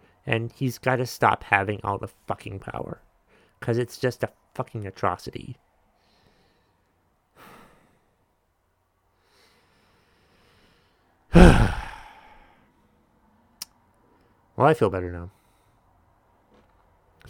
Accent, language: American, English